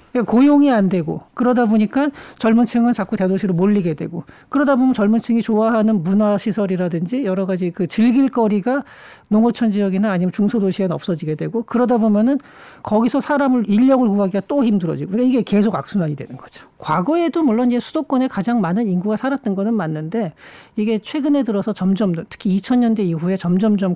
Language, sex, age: Korean, male, 40-59